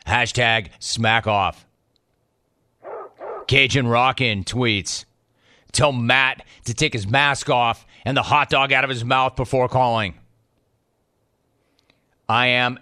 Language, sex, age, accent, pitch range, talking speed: English, male, 40-59, American, 110-135 Hz, 115 wpm